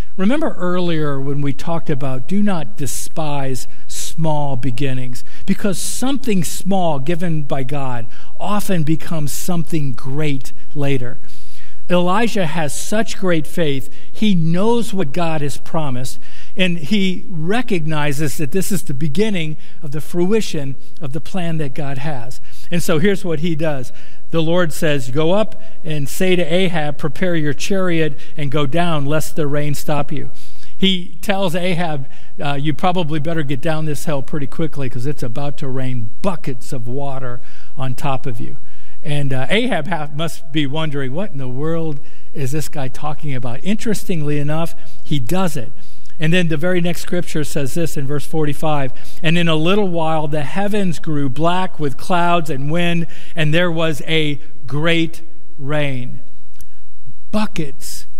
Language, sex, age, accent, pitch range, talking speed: English, male, 50-69, American, 135-170 Hz, 155 wpm